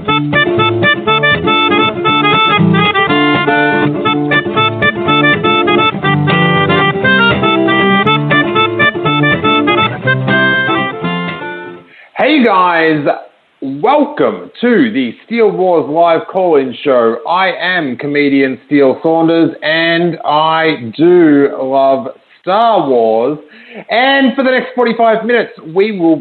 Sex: male